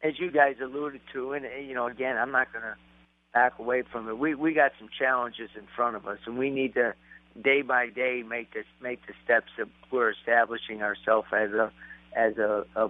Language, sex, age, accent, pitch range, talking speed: English, male, 50-69, American, 115-135 Hz, 220 wpm